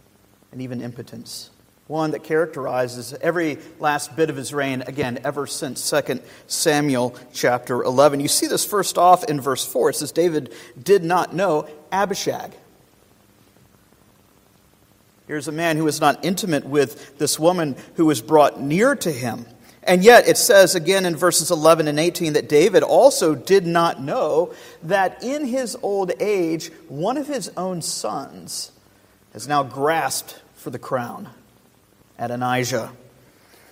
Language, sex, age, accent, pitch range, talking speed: English, male, 50-69, American, 125-180 Hz, 150 wpm